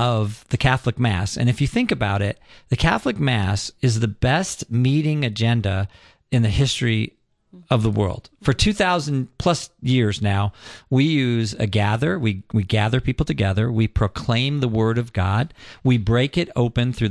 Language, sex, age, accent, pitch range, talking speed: English, male, 50-69, American, 105-130 Hz, 170 wpm